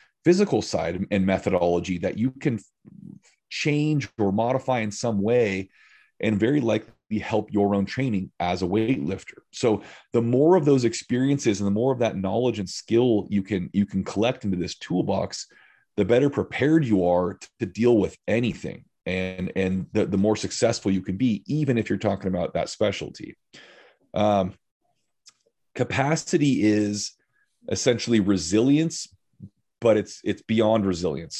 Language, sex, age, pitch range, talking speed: English, male, 30-49, 95-115 Hz, 155 wpm